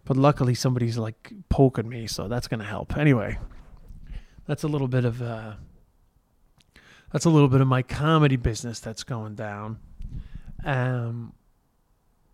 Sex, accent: male, American